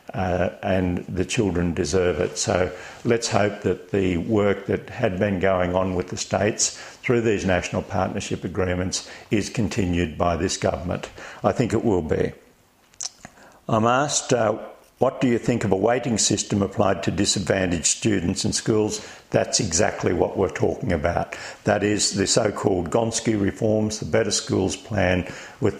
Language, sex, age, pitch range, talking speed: English, male, 50-69, 90-110 Hz, 160 wpm